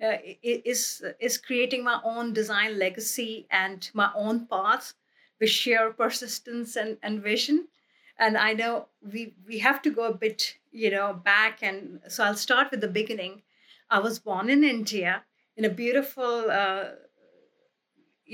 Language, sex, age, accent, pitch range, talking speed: English, female, 50-69, Indian, 210-245 Hz, 155 wpm